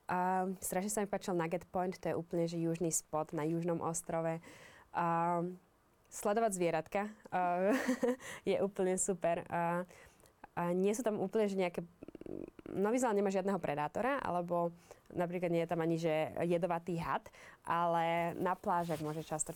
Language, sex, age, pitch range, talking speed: Slovak, female, 20-39, 165-195 Hz, 150 wpm